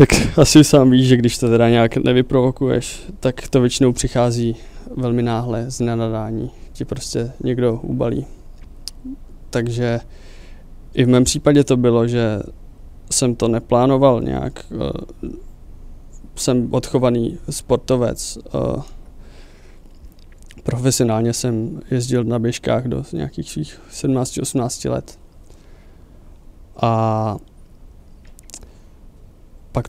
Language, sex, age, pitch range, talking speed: Czech, male, 20-39, 90-130 Hz, 95 wpm